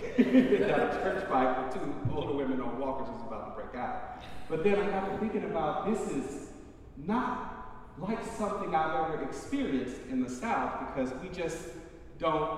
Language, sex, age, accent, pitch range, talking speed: English, male, 40-59, American, 145-200 Hz, 175 wpm